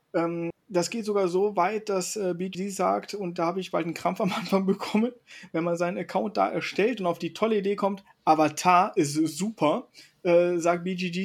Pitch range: 170-210 Hz